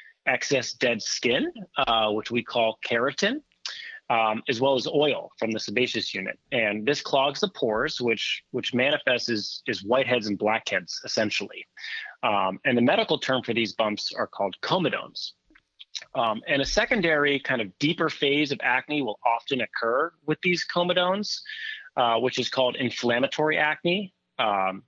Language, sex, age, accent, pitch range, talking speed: English, male, 30-49, American, 115-150 Hz, 155 wpm